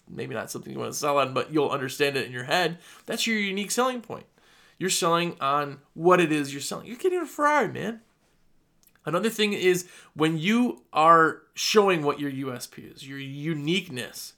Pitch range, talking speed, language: 145-205 Hz, 190 wpm, English